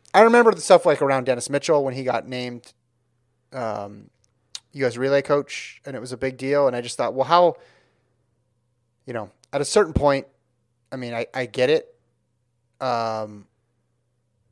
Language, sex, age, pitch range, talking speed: English, male, 30-49, 115-140 Hz, 170 wpm